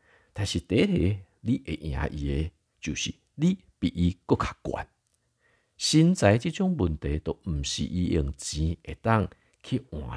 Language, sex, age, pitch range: Chinese, male, 50-69, 80-120 Hz